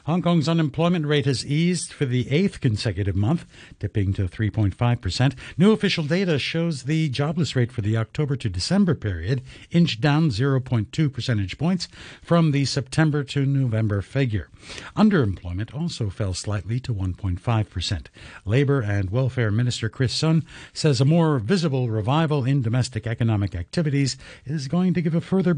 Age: 60-79